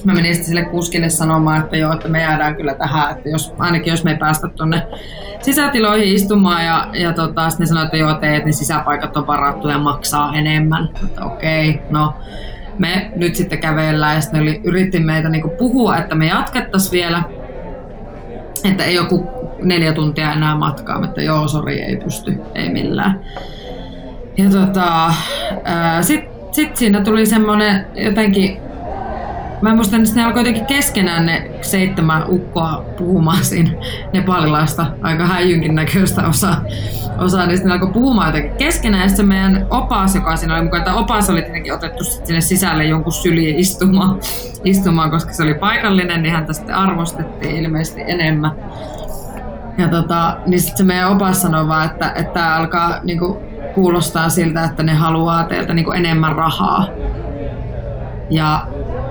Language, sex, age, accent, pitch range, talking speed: Finnish, female, 20-39, native, 155-185 Hz, 155 wpm